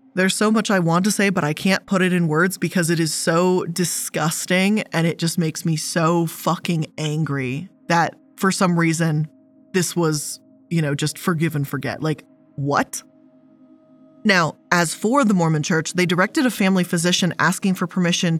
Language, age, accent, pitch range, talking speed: English, 20-39, American, 165-210 Hz, 180 wpm